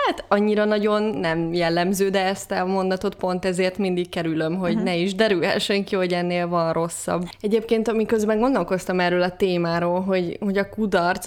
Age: 20-39